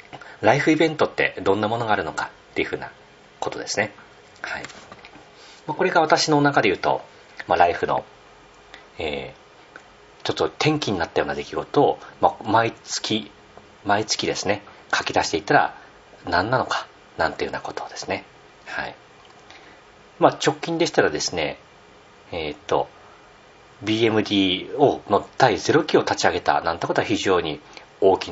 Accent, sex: native, male